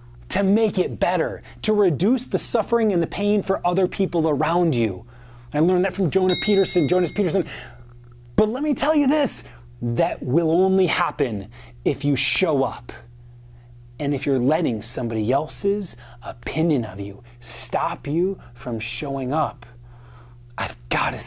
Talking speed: 150 wpm